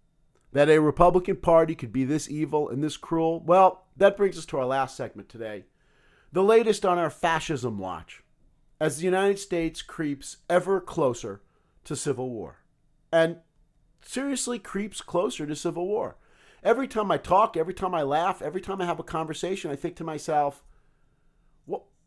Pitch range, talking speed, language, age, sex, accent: 135-195 Hz, 170 wpm, English, 50-69, male, American